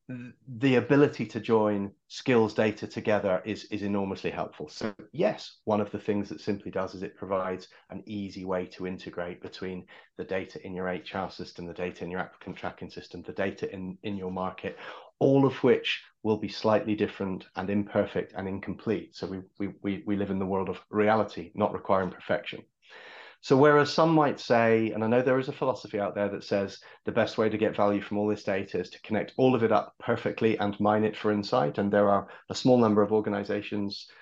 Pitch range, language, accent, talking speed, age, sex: 100-110 Hz, English, British, 210 wpm, 30-49, male